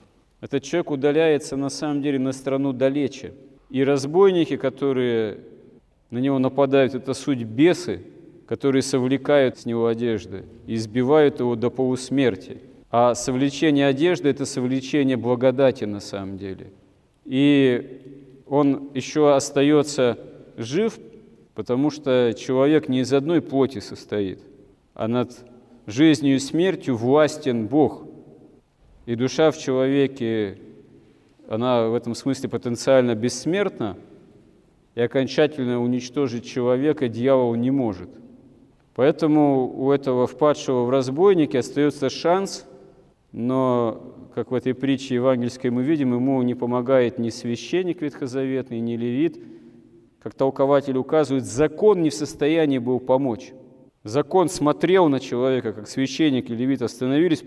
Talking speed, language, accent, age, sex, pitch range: 120 wpm, Russian, native, 40-59, male, 120-140 Hz